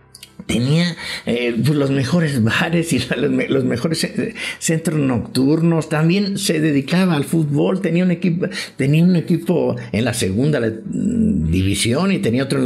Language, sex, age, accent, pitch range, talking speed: English, male, 60-79, Mexican, 110-170 Hz, 165 wpm